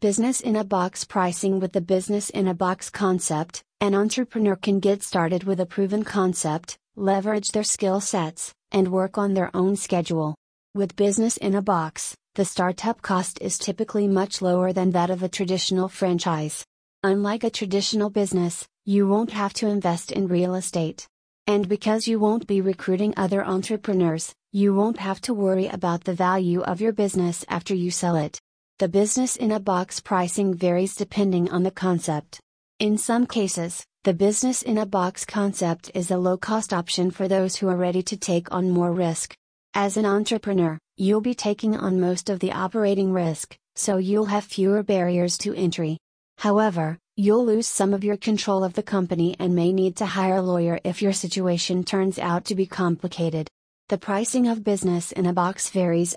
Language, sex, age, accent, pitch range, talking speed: English, female, 30-49, American, 180-205 Hz, 170 wpm